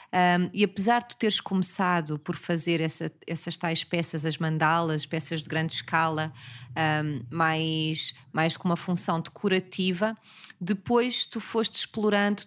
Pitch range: 170-200 Hz